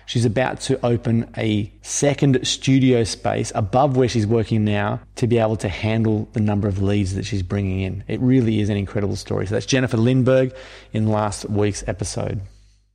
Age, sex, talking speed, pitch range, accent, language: 30-49, male, 185 wpm, 110-130 Hz, Australian, English